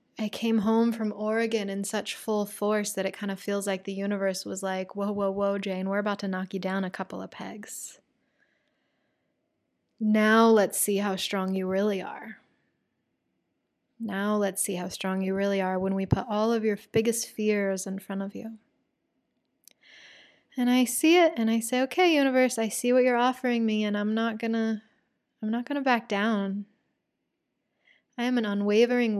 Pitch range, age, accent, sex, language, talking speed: 200-230 Hz, 20-39, American, female, English, 185 wpm